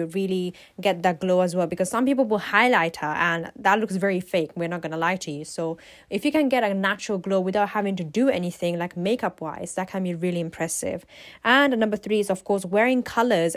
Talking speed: 230 wpm